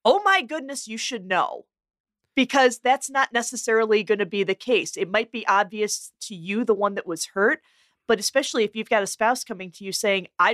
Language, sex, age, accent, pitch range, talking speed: English, female, 40-59, American, 180-220 Hz, 215 wpm